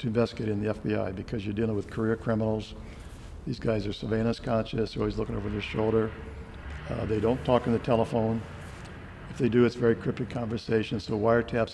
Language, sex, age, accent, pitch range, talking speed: English, male, 60-79, American, 110-120 Hz, 195 wpm